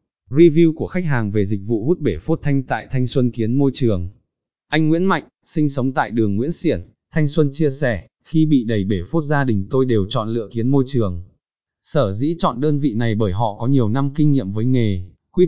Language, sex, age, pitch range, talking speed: Vietnamese, male, 20-39, 110-145 Hz, 235 wpm